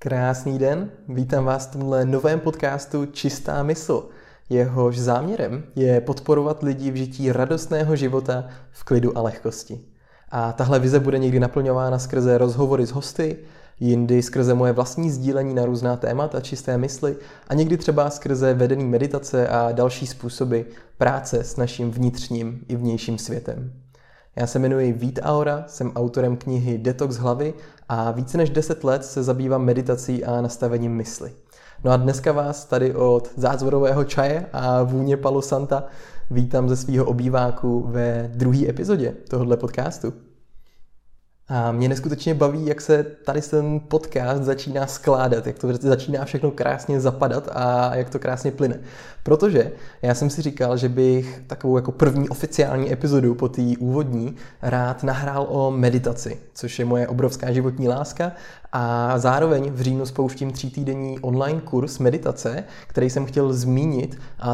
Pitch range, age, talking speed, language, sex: 125-140 Hz, 20-39, 150 wpm, Czech, male